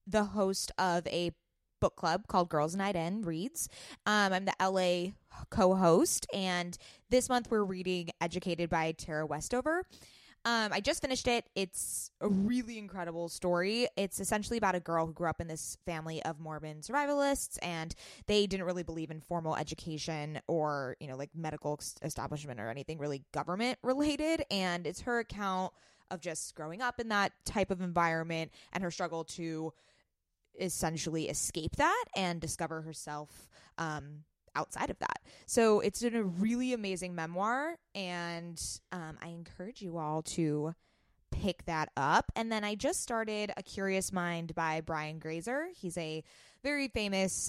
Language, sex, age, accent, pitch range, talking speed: English, female, 20-39, American, 160-205 Hz, 160 wpm